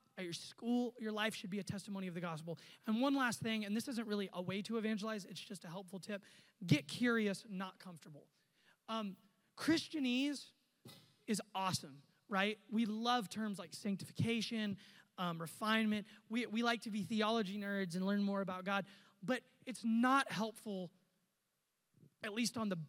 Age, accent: 20-39, American